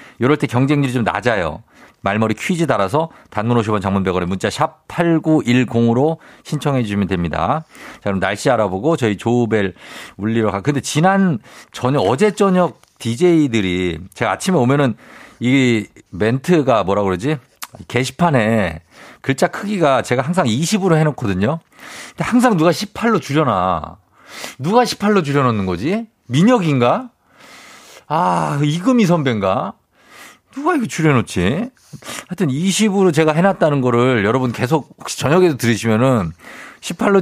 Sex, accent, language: male, native, Korean